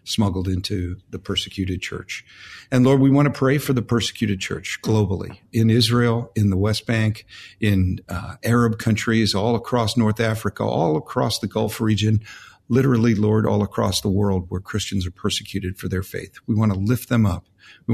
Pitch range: 100-115 Hz